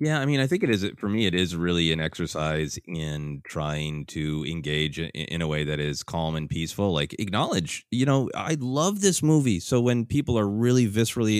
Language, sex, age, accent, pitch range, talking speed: English, male, 30-49, American, 80-110 Hz, 210 wpm